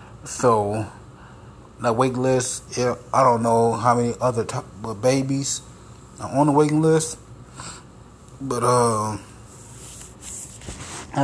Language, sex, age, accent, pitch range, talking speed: English, male, 30-49, American, 115-135 Hz, 110 wpm